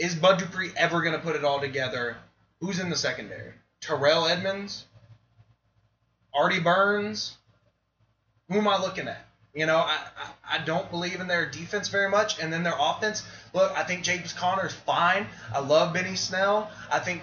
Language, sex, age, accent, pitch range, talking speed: English, male, 20-39, American, 145-185 Hz, 180 wpm